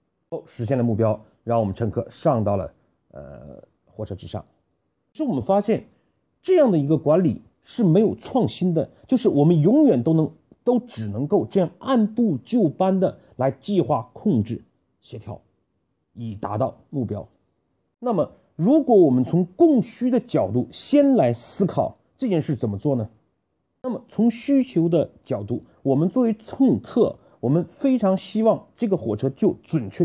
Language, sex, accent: Chinese, male, native